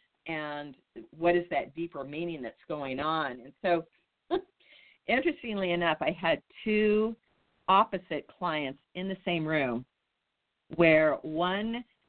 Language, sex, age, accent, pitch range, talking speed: English, female, 50-69, American, 150-190 Hz, 120 wpm